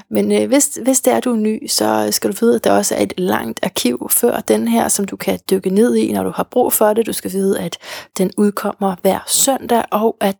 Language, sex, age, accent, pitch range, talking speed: Danish, female, 30-49, native, 195-240 Hz, 260 wpm